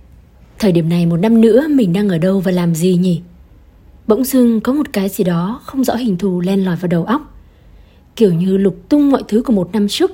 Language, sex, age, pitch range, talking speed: Vietnamese, female, 20-39, 175-225 Hz, 235 wpm